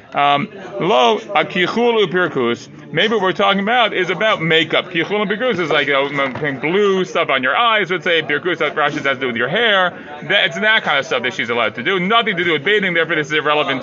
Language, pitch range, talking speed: English, 140-185 Hz, 215 wpm